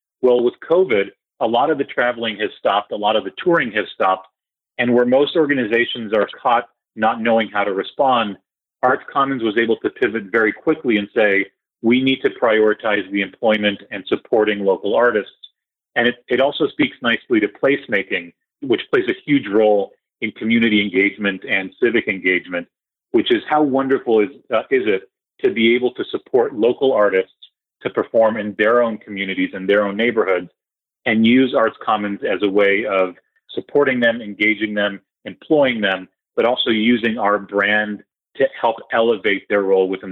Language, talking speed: English, 175 wpm